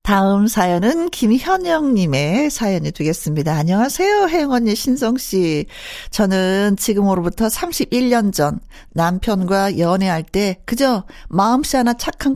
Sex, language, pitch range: female, Korean, 190-275 Hz